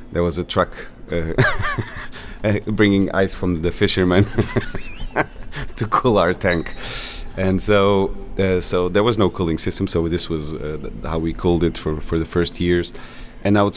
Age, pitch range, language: 30-49, 80-95 Hz, English